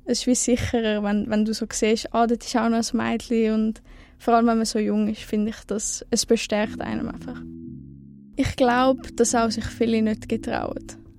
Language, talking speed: German, 210 wpm